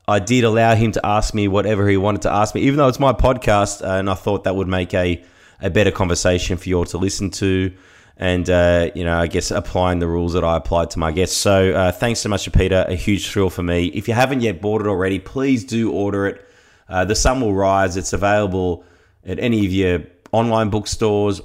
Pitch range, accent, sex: 90-110 Hz, Australian, male